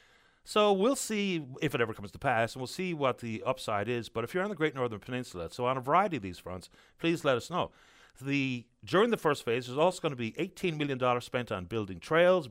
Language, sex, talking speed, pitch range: English, male, 245 wpm, 105-160 Hz